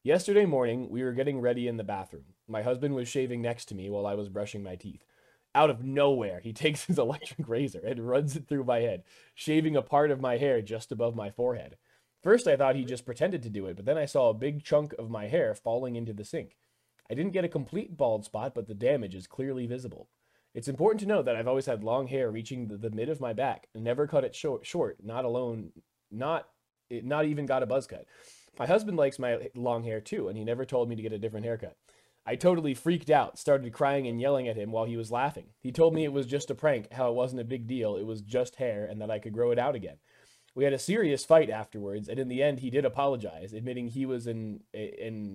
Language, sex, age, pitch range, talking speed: English, male, 20-39, 115-145 Hz, 250 wpm